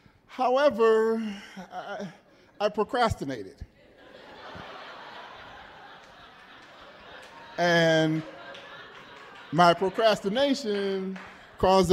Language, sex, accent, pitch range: English, male, American, 135-175 Hz